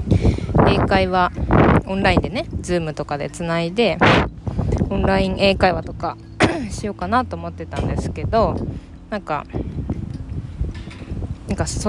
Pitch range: 145-220 Hz